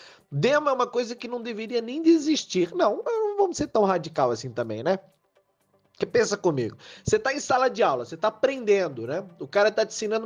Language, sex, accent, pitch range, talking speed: Portuguese, male, Brazilian, 150-240 Hz, 215 wpm